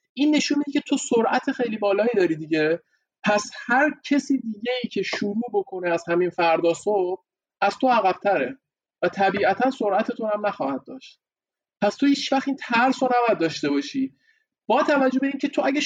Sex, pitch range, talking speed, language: male, 180-255 Hz, 180 wpm, Persian